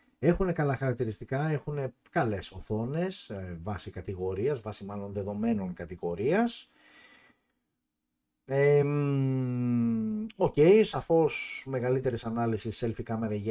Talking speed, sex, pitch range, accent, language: 90 wpm, male, 100-150 Hz, native, Greek